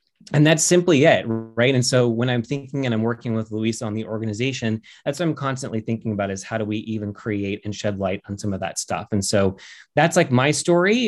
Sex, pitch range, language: male, 105-130 Hz, English